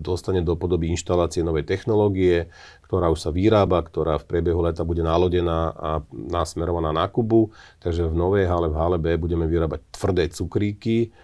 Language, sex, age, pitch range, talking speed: Slovak, male, 40-59, 85-95 Hz, 165 wpm